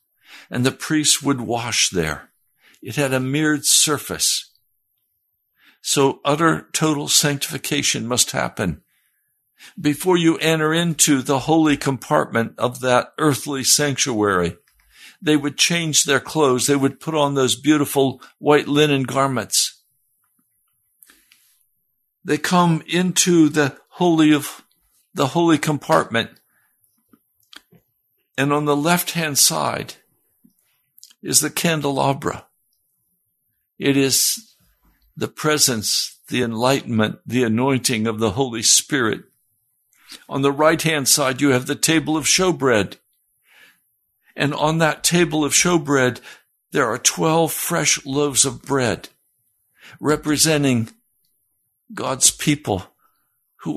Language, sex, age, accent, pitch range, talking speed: English, male, 60-79, American, 125-155 Hz, 105 wpm